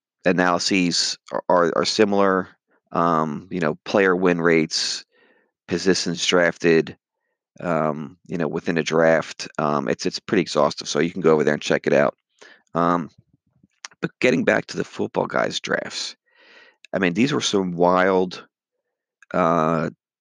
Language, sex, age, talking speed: English, male, 40-59, 150 wpm